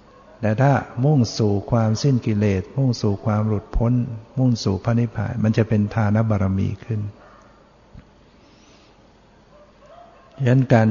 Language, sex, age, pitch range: Thai, male, 60-79, 105-120 Hz